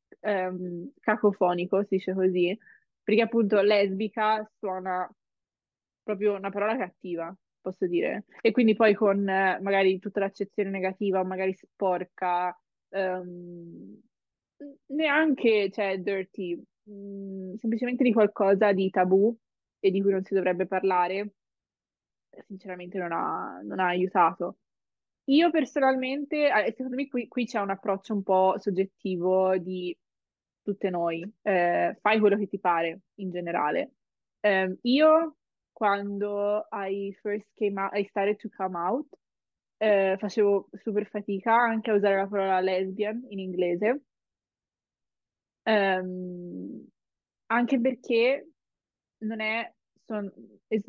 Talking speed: 120 wpm